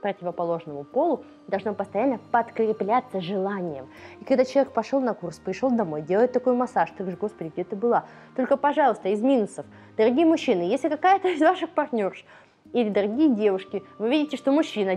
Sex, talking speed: female, 165 wpm